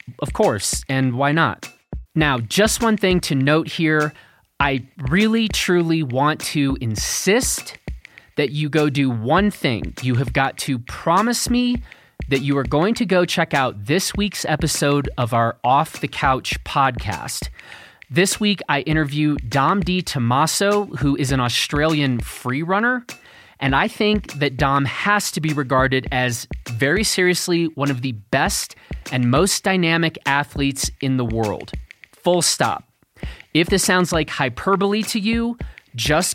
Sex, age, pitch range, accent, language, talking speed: male, 30-49, 130-180 Hz, American, English, 155 wpm